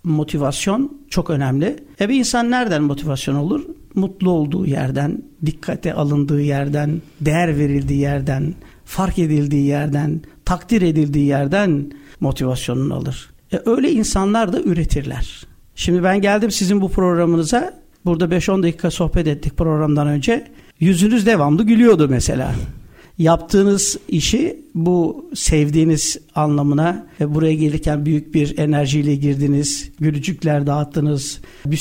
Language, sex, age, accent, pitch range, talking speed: Turkish, male, 60-79, native, 145-180 Hz, 120 wpm